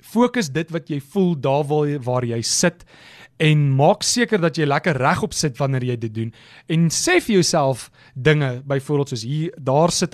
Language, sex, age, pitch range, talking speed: English, male, 30-49, 130-175 Hz, 185 wpm